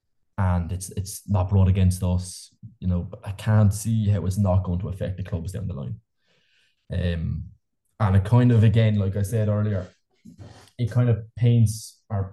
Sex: male